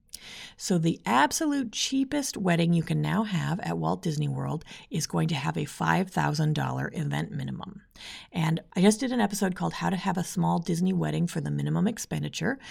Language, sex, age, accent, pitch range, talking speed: English, female, 40-59, American, 155-195 Hz, 185 wpm